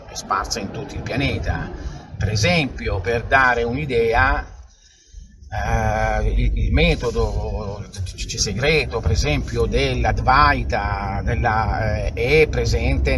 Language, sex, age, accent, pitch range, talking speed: Italian, male, 50-69, native, 90-120 Hz, 85 wpm